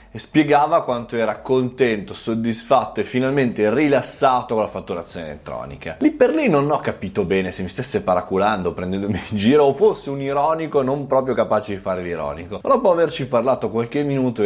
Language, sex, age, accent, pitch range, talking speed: Italian, male, 20-39, native, 100-130 Hz, 180 wpm